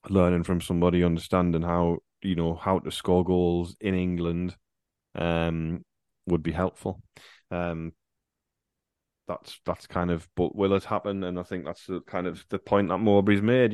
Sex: male